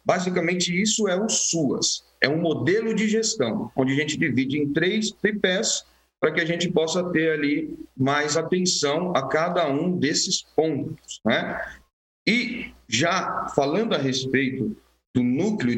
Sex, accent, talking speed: male, Brazilian, 150 wpm